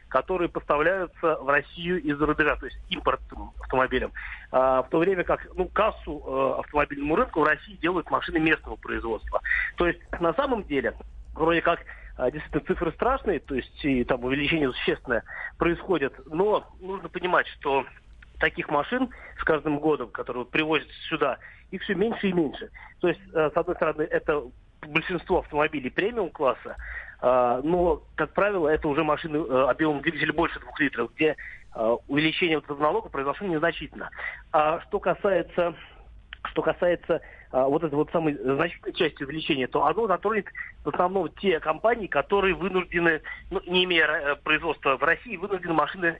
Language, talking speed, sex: Russian, 150 wpm, male